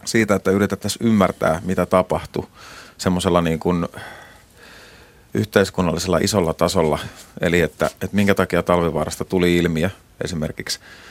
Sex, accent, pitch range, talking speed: male, native, 85-95 Hz, 110 wpm